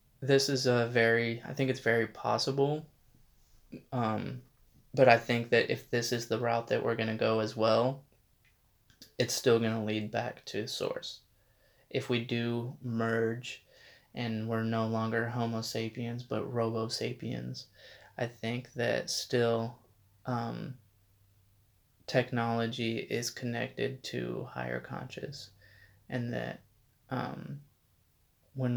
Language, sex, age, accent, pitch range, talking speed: English, male, 20-39, American, 110-125 Hz, 130 wpm